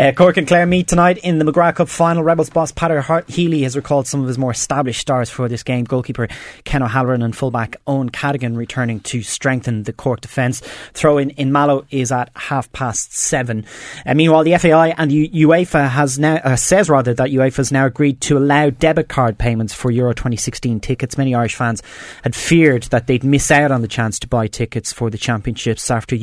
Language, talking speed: English, 215 wpm